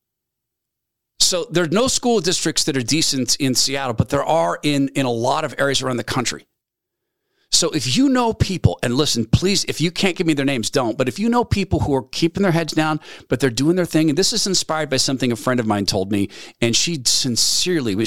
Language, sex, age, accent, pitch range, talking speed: English, male, 40-59, American, 110-140 Hz, 235 wpm